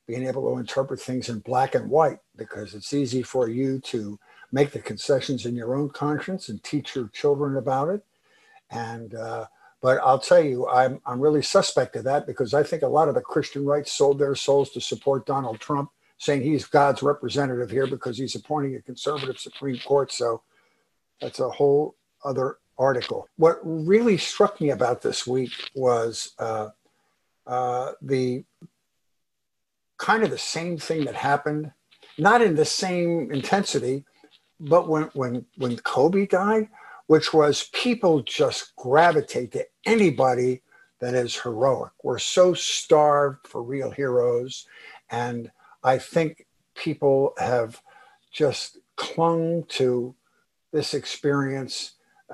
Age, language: 60-79, English